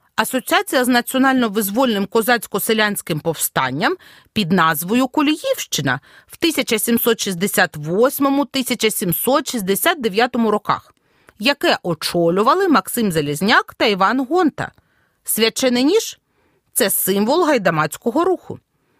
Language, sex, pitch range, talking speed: Ukrainian, female, 215-305 Hz, 80 wpm